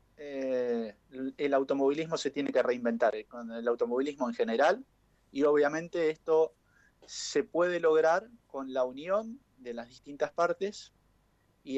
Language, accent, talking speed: Spanish, Argentinian, 135 wpm